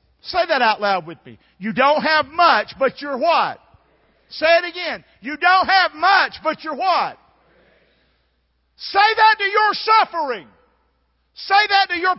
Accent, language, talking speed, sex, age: American, English, 160 wpm, male, 50-69